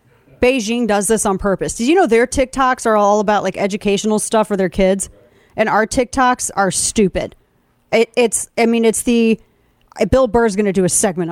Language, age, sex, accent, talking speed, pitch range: English, 30-49, female, American, 195 wpm, 195-250 Hz